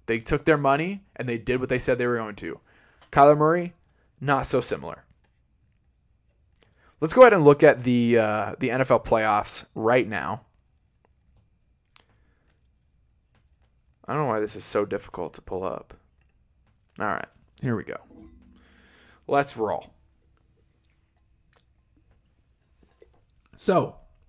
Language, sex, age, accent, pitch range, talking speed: English, male, 20-39, American, 100-140 Hz, 125 wpm